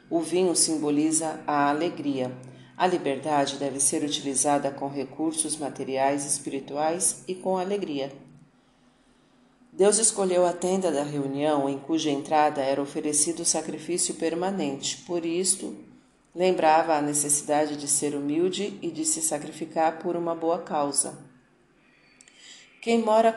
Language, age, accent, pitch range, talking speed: Portuguese, 40-59, Brazilian, 145-180 Hz, 125 wpm